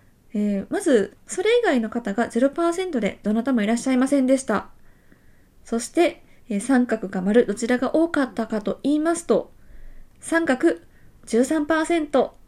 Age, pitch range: 20-39, 220-315 Hz